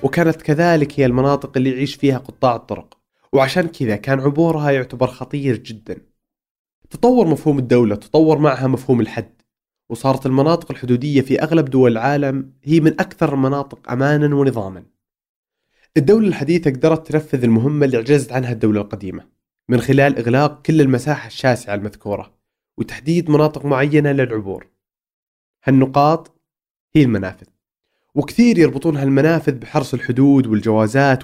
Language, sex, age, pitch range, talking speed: Arabic, male, 20-39, 120-150 Hz, 125 wpm